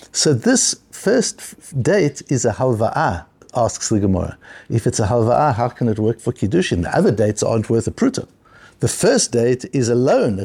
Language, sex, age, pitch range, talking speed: English, male, 60-79, 120-170 Hz, 190 wpm